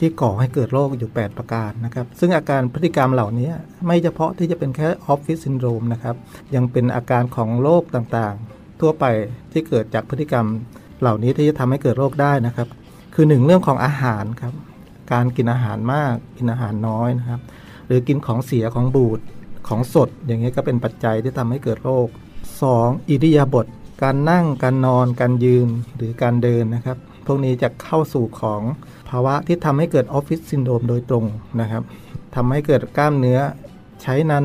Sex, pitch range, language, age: male, 115-140 Hz, Thai, 60-79